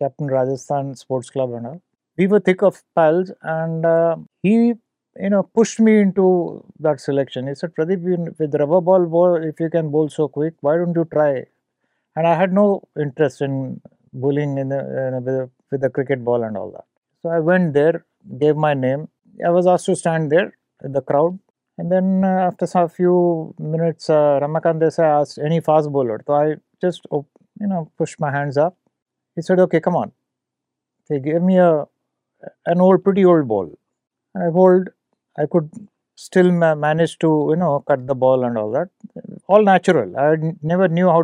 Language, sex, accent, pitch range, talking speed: English, male, Indian, 145-185 Hz, 190 wpm